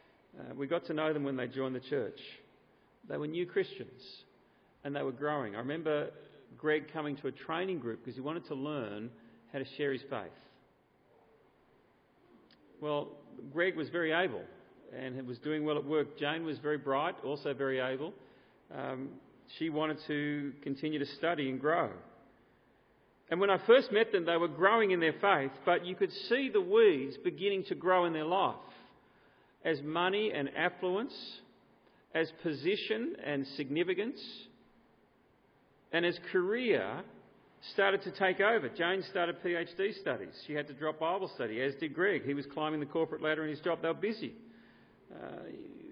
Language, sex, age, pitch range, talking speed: English, male, 40-59, 145-200 Hz, 170 wpm